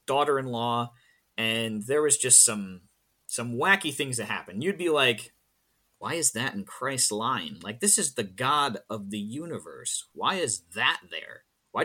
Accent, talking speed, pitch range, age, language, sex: American, 165 wpm, 110-135 Hz, 30-49, English, male